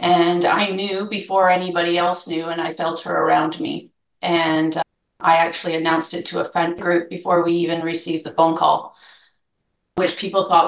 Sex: female